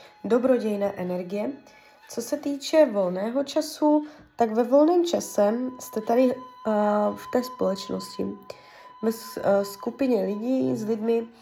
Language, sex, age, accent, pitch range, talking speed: Czech, female, 20-39, native, 205-260 Hz, 120 wpm